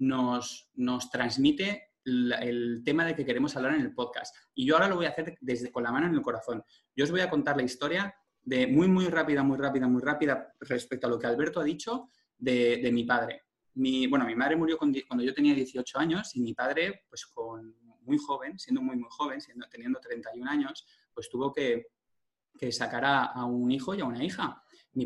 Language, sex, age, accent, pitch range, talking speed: Spanish, male, 20-39, Spanish, 125-170 Hz, 220 wpm